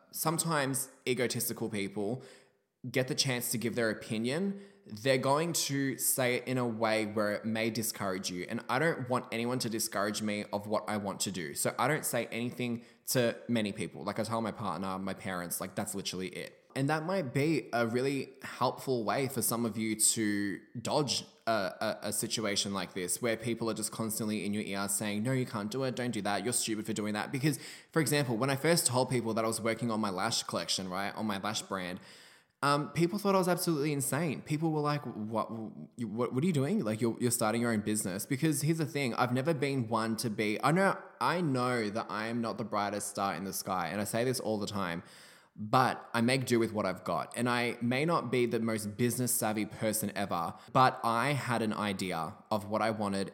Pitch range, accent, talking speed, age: 105-140 Hz, Australian, 225 wpm, 10-29